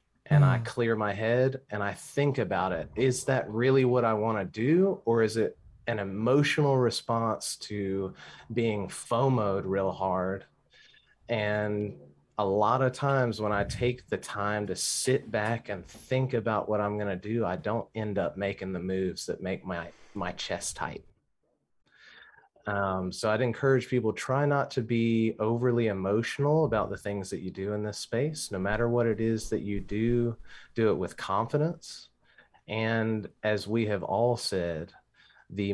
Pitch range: 95-120 Hz